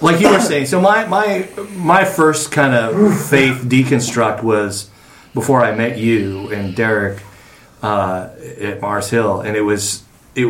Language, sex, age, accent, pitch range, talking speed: English, male, 30-49, American, 105-130 Hz, 160 wpm